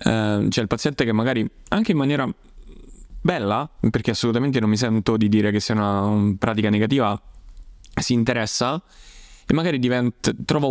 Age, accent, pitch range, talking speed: 10-29, native, 110-130 Hz, 170 wpm